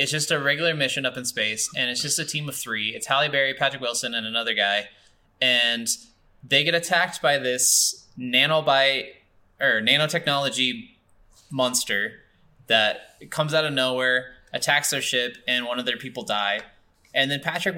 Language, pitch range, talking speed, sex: English, 120-165 Hz, 170 wpm, male